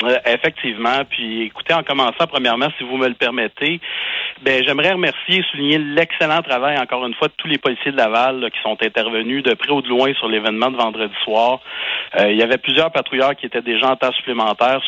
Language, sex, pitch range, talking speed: French, male, 115-135 Hz, 215 wpm